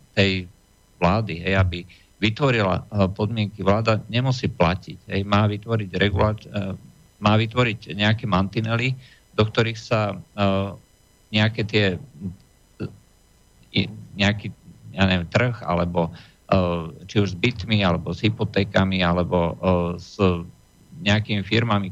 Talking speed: 100 wpm